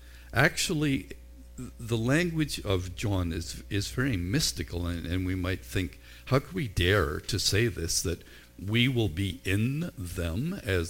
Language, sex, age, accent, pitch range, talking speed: English, male, 60-79, American, 75-115 Hz, 155 wpm